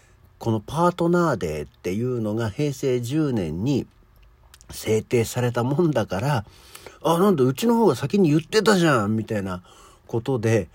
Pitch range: 85-125 Hz